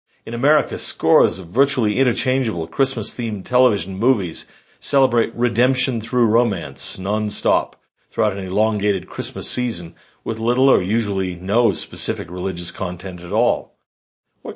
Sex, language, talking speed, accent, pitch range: male, English, 125 wpm, American, 95-120 Hz